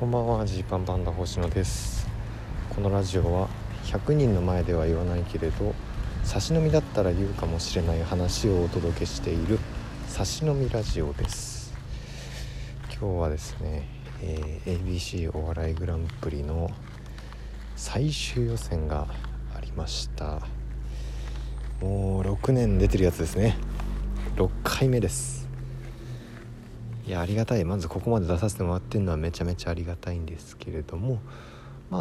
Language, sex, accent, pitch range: Japanese, male, native, 80-115 Hz